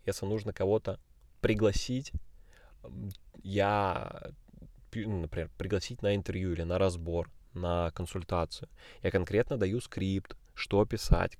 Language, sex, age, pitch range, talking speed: Russian, male, 20-39, 90-110 Hz, 105 wpm